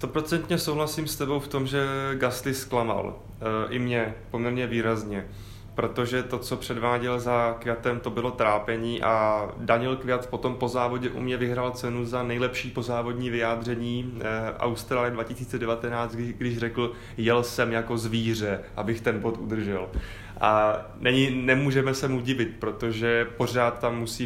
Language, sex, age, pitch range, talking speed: English, male, 20-39, 115-125 Hz, 150 wpm